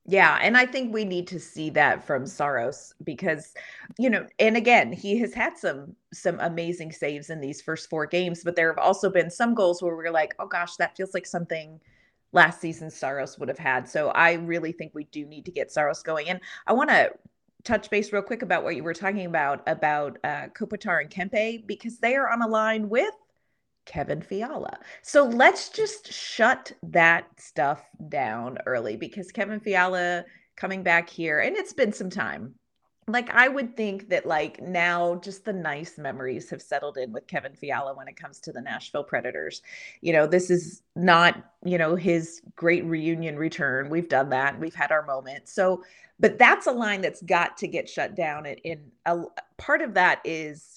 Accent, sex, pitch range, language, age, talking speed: American, female, 160-205 Hz, English, 30-49, 200 wpm